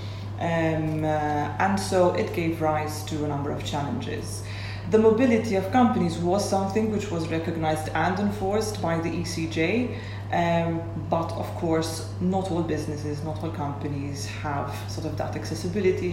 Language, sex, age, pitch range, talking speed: English, female, 30-49, 100-150 Hz, 155 wpm